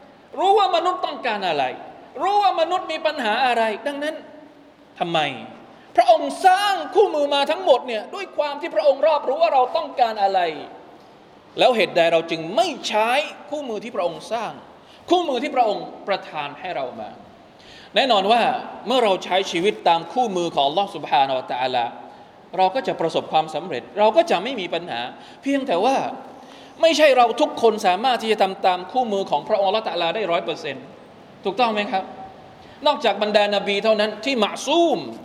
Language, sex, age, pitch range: Thai, male, 20-39, 195-285 Hz